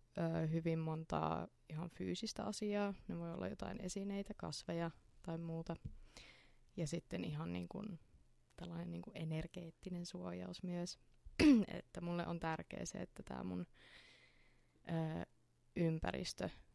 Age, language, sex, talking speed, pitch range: 20-39, Finnish, female, 115 wpm, 120-185 Hz